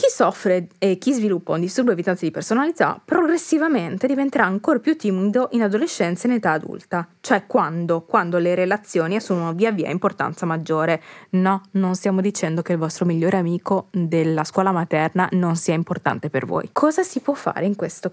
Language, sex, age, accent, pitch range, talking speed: Italian, female, 20-39, native, 175-220 Hz, 180 wpm